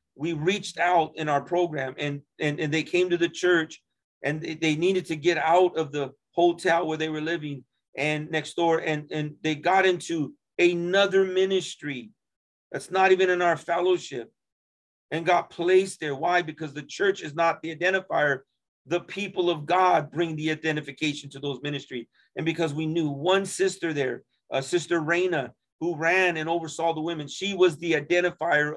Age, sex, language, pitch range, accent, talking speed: 40-59, male, English, 150-180 Hz, American, 180 wpm